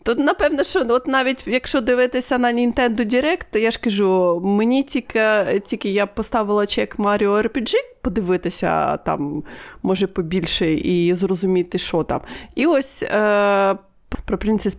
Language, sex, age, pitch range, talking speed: Ukrainian, female, 30-49, 195-250 Hz, 140 wpm